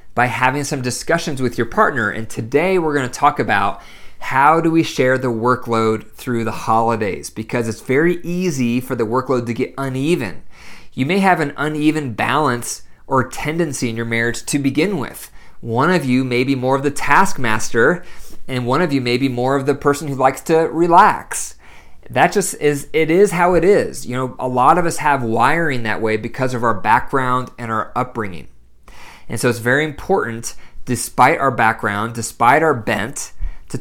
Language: English